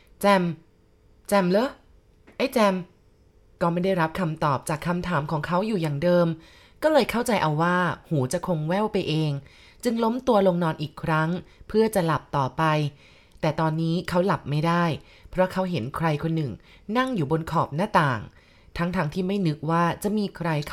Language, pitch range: Thai, 155-195 Hz